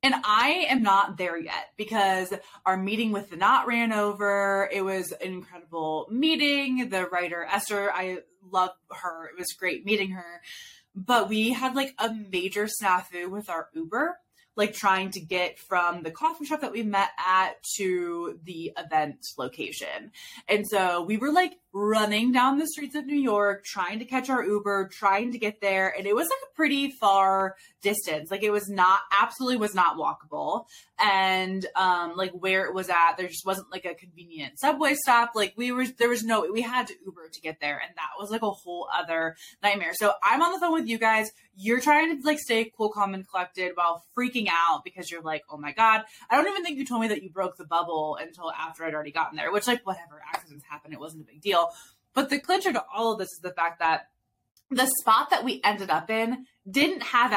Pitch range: 185-240 Hz